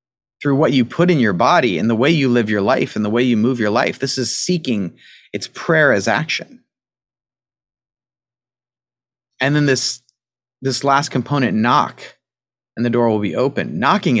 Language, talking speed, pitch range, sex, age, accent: English, 175 wpm, 120-135 Hz, male, 30-49, American